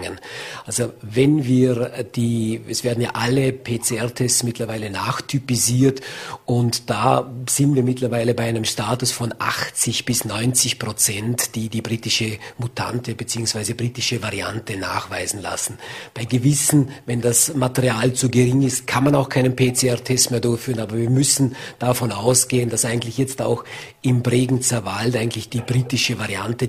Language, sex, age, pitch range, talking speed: German, male, 50-69, 115-135 Hz, 145 wpm